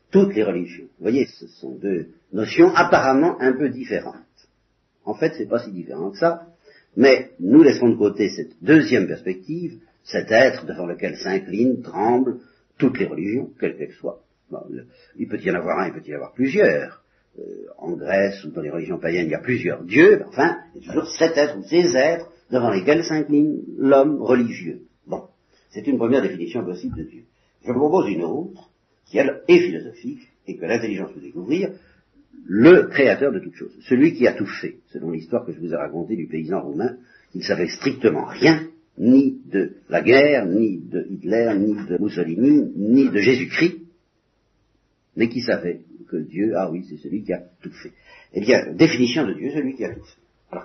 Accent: French